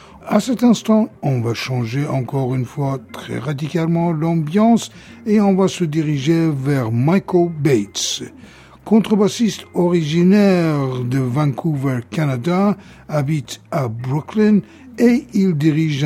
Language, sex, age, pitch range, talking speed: French, male, 60-79, 140-185 Hz, 115 wpm